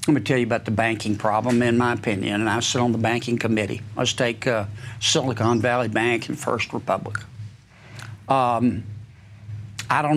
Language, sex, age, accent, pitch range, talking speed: English, male, 60-79, American, 110-150 Hz, 175 wpm